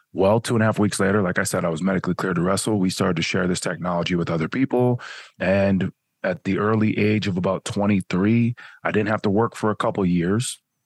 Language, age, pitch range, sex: English, 30-49, 95-110 Hz, male